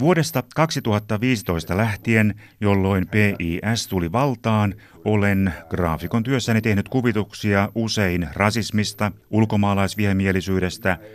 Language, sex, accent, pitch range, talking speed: Finnish, male, native, 90-110 Hz, 80 wpm